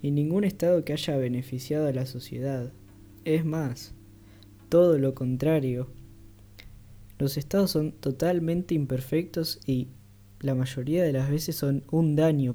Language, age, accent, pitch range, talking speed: Spanish, 20-39, Argentinian, 110-140 Hz, 135 wpm